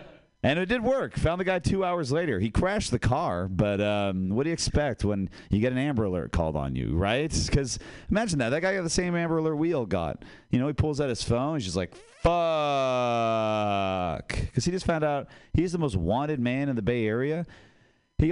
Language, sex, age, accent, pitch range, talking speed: English, male, 40-59, American, 105-150 Hz, 225 wpm